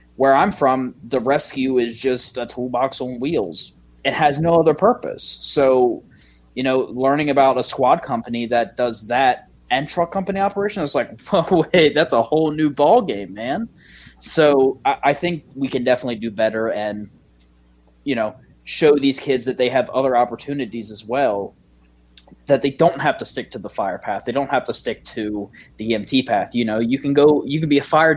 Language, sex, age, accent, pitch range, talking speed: English, male, 20-39, American, 115-145 Hz, 195 wpm